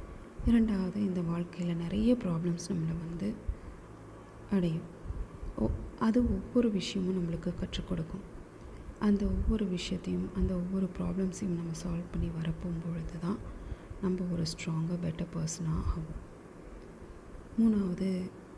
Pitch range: 165-205 Hz